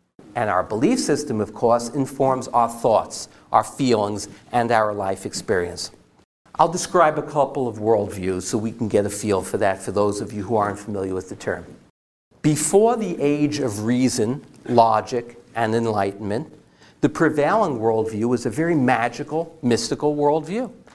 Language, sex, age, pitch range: English, male, 50-69, 115-155 Hz